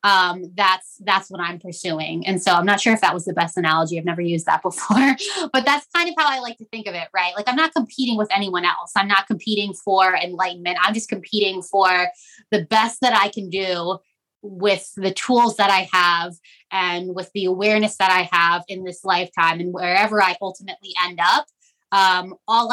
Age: 20-39